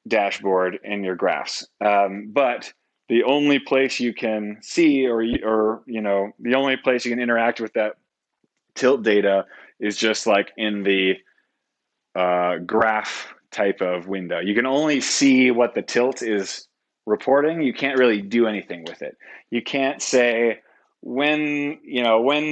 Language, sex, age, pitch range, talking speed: English, male, 30-49, 100-125 Hz, 155 wpm